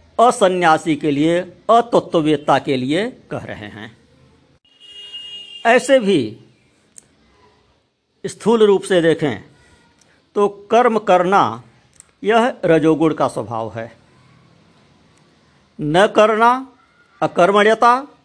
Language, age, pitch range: Hindi, 50-69, 150-205 Hz